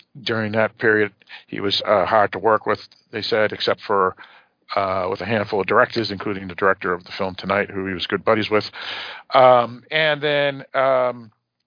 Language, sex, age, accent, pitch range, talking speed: English, male, 50-69, American, 100-130 Hz, 190 wpm